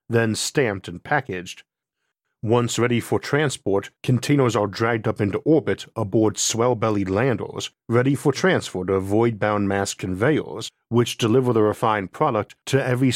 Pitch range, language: 100-125 Hz, English